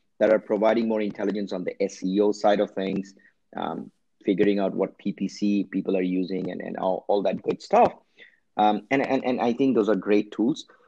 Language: English